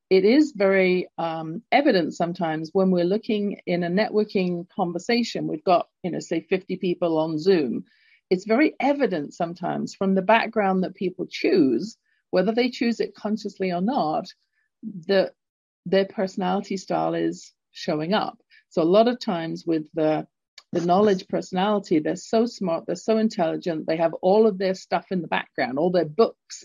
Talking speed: 165 wpm